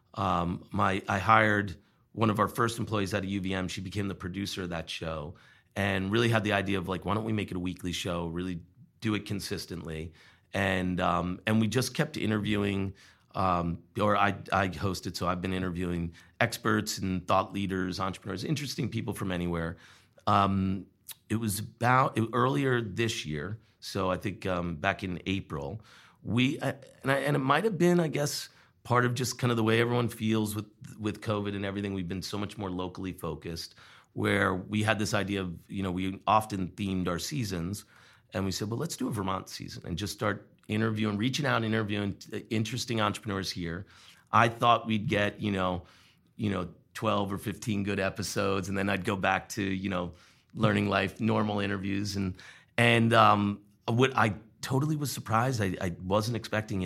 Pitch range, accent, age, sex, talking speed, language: 95-110 Hz, American, 40-59, male, 185 wpm, English